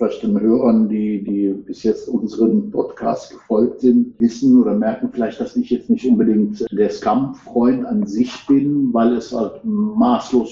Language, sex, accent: German, male, German